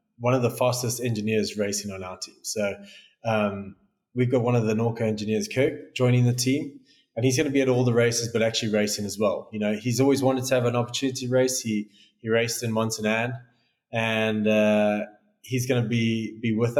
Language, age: English, 20-39